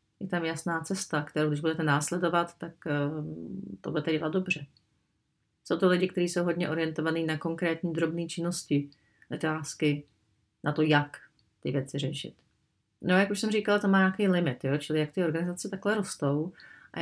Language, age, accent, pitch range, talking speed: Czech, 30-49, native, 160-180 Hz, 175 wpm